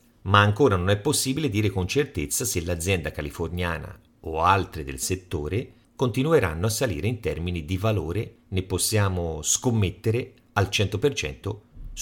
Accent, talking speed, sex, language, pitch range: native, 135 wpm, male, Italian, 90-120 Hz